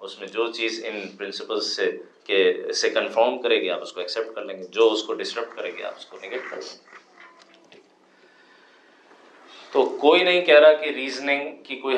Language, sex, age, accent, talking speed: English, male, 30-49, Indian, 155 wpm